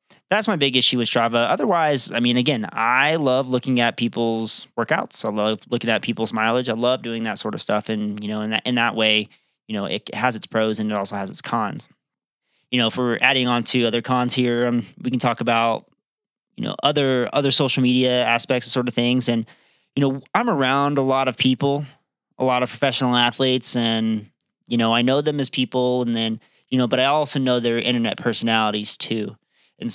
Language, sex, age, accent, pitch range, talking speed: English, male, 20-39, American, 110-125 Hz, 220 wpm